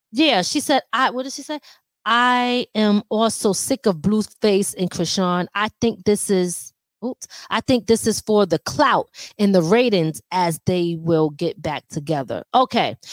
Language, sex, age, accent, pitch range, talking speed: English, female, 20-39, American, 205-285 Hz, 175 wpm